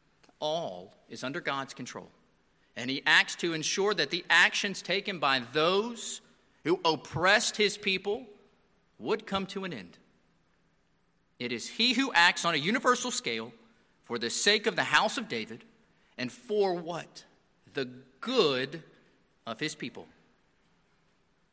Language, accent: English, American